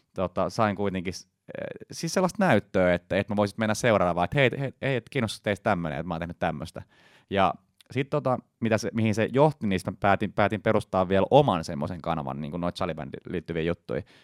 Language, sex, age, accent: Finnish, male, 30-49, native